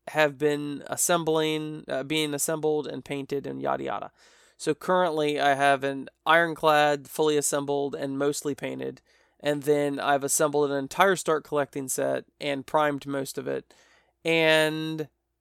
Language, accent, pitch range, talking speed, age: English, American, 140-160 Hz, 145 wpm, 20-39